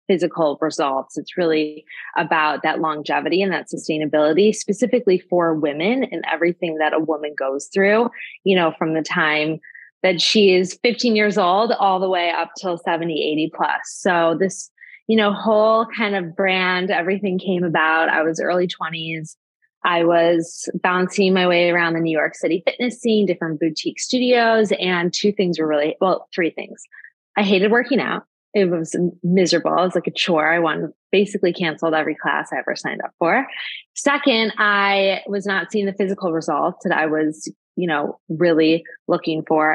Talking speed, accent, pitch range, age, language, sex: 175 wpm, American, 160-205 Hz, 20-39, English, female